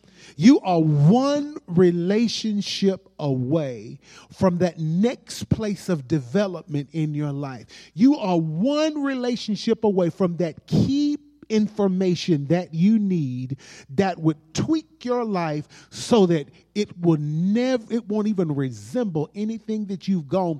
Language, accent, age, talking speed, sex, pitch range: English, American, 40-59, 120 wpm, male, 150-215 Hz